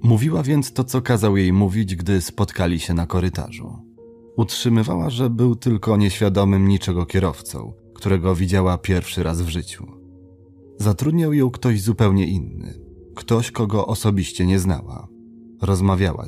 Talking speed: 135 wpm